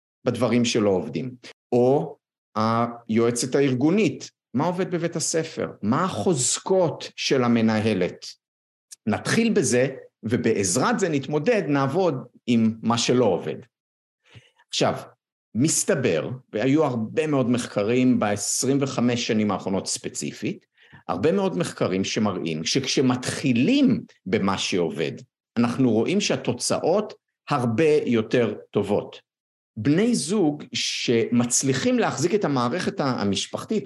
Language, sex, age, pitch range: Hebrew, male, 50-69, 115-175 Hz